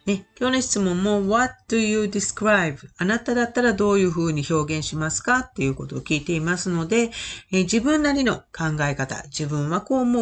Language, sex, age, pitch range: Japanese, female, 40-59, 140-225 Hz